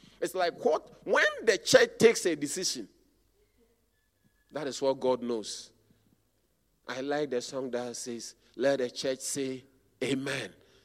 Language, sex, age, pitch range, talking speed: English, male, 40-59, 135-185 Hz, 135 wpm